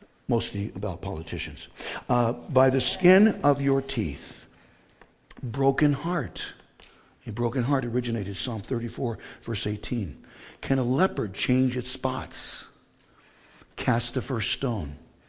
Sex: male